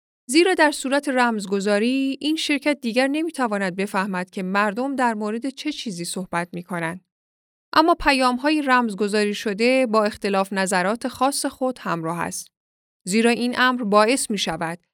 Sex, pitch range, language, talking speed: female, 190-255 Hz, Persian, 145 wpm